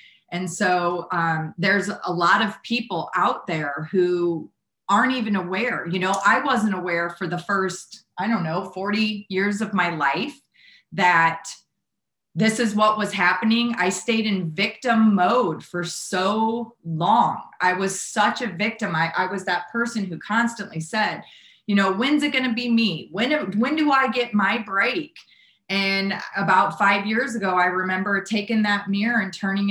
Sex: female